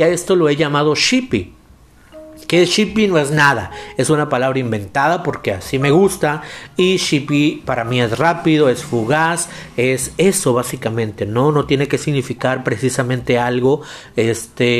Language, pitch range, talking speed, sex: Spanish, 120-150 Hz, 150 wpm, male